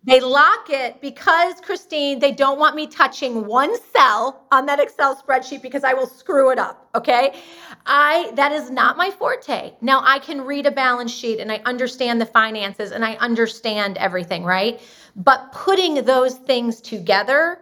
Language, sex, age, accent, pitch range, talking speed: English, female, 30-49, American, 200-270 Hz, 175 wpm